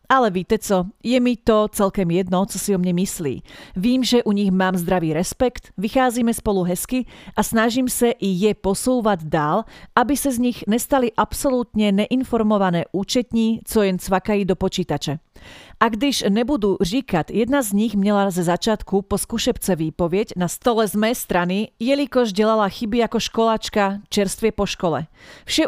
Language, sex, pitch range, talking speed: Slovak, female, 190-235 Hz, 160 wpm